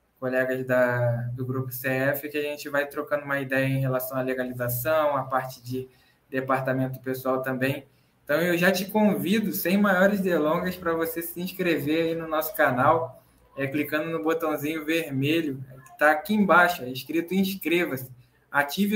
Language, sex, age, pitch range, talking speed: Portuguese, male, 20-39, 140-170 Hz, 150 wpm